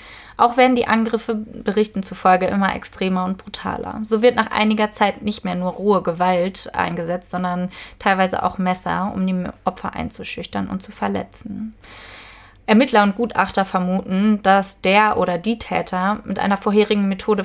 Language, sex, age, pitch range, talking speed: German, female, 20-39, 185-205 Hz, 155 wpm